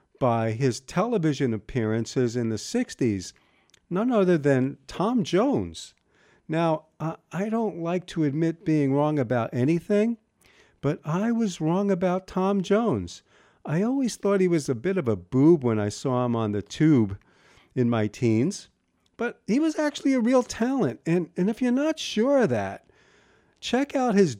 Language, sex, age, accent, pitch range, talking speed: English, male, 50-69, American, 120-185 Hz, 165 wpm